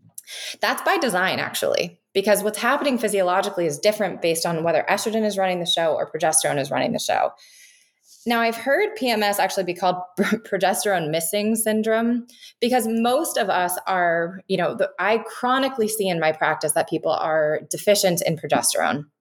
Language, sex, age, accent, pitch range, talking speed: English, female, 20-39, American, 170-230 Hz, 165 wpm